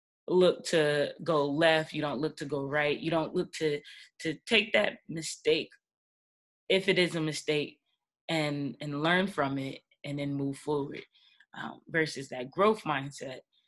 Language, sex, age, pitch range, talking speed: English, female, 20-39, 140-160 Hz, 160 wpm